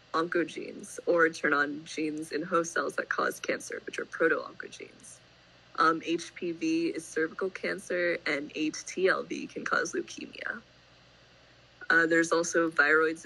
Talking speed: 125 wpm